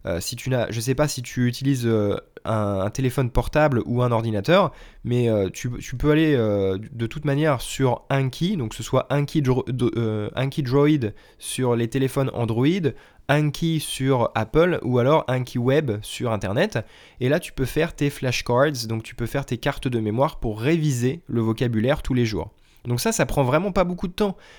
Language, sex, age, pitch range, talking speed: French, male, 20-39, 120-155 Hz, 200 wpm